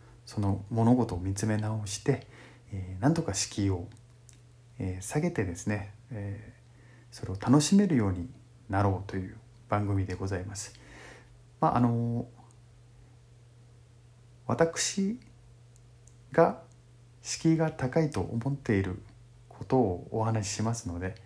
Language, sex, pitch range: Japanese, male, 100-120 Hz